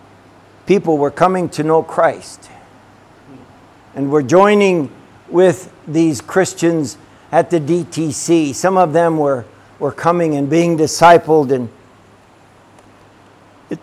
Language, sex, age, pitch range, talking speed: English, male, 60-79, 120-180 Hz, 115 wpm